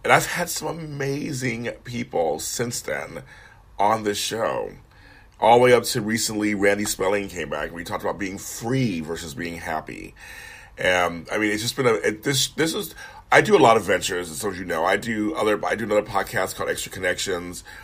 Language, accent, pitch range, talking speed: English, American, 95-135 Hz, 205 wpm